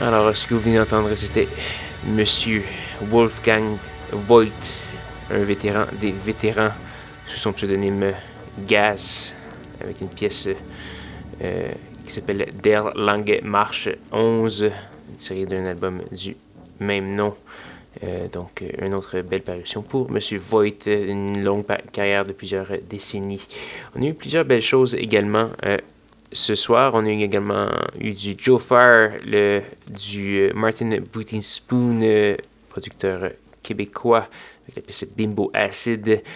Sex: male